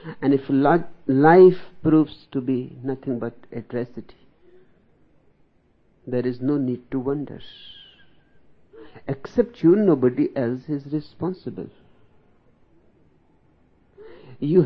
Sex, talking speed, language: male, 100 wpm, Hindi